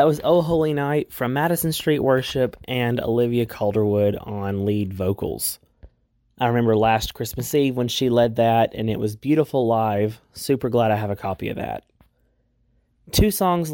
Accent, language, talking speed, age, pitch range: American, English, 170 wpm, 20-39, 110-140 Hz